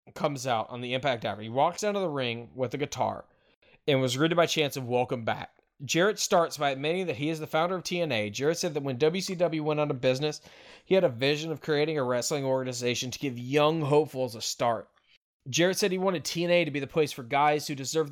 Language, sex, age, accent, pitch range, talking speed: English, male, 20-39, American, 130-165 Hz, 235 wpm